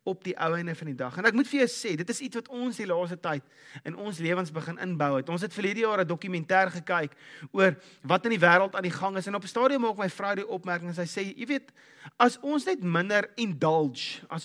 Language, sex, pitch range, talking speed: English, male, 160-225 Hz, 260 wpm